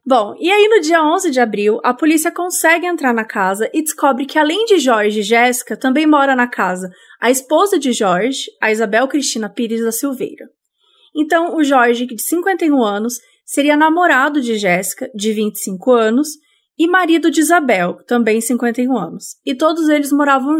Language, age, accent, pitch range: Portuguese, 20-39, Brazilian, 230-320 Hz